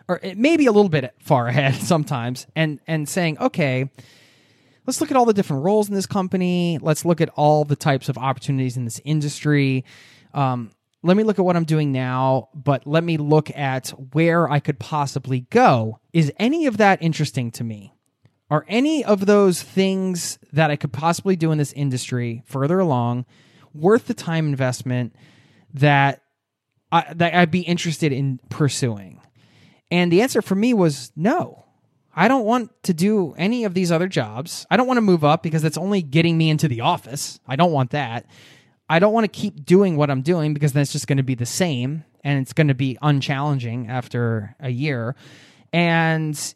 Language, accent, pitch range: English, American, 135-180 Hz